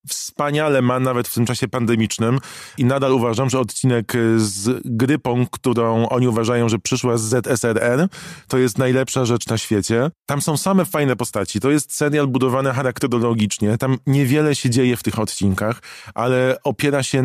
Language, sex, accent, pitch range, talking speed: Polish, male, native, 115-140 Hz, 165 wpm